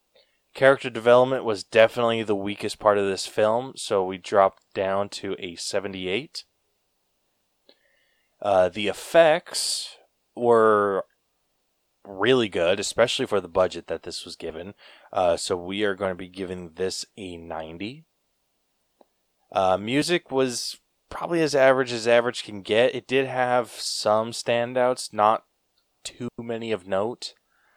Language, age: English, 20-39